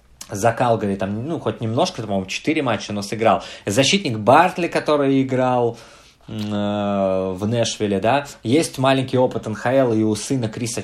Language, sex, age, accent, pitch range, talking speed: Russian, male, 20-39, native, 110-145 Hz, 150 wpm